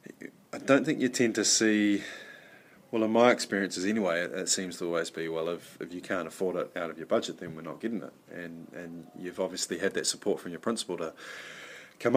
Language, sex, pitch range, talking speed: English, male, 85-105 Hz, 225 wpm